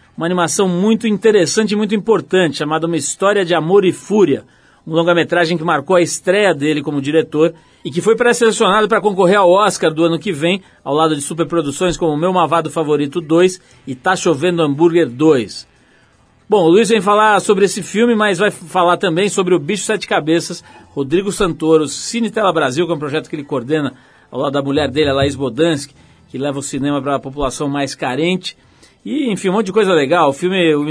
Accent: Brazilian